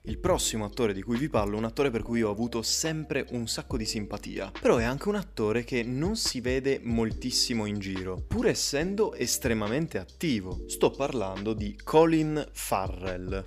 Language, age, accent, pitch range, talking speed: Italian, 20-39, native, 100-120 Hz, 180 wpm